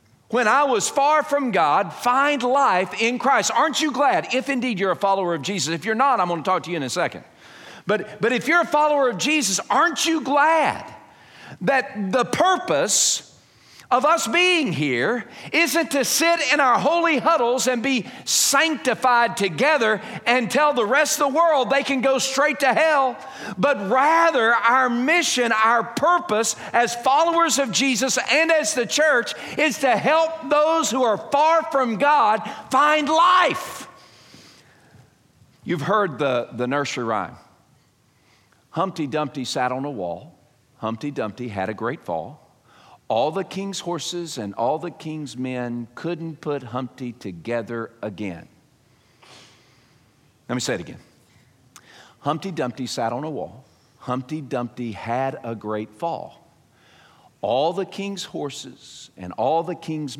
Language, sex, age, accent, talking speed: English, male, 50-69, American, 155 wpm